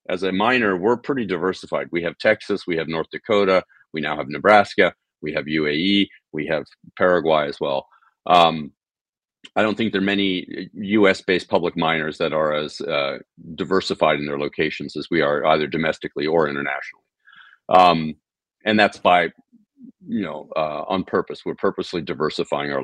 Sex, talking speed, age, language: male, 165 wpm, 40-59, English